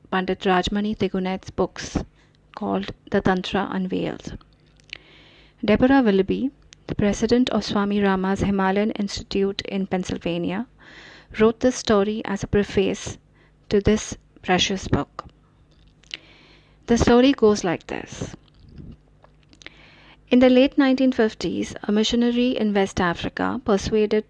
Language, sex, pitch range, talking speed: English, female, 195-230 Hz, 110 wpm